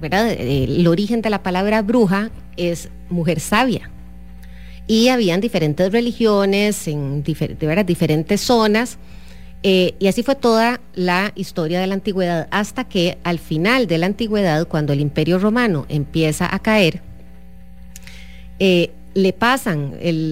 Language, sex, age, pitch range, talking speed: English, female, 30-49, 155-205 Hz, 130 wpm